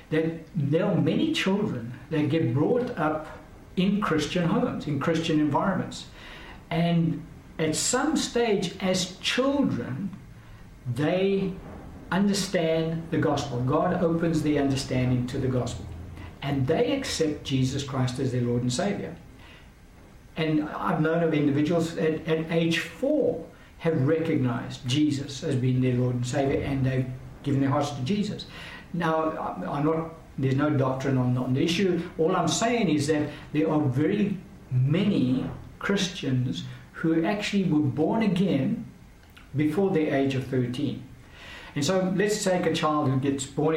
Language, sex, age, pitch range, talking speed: English, male, 60-79, 130-170 Hz, 145 wpm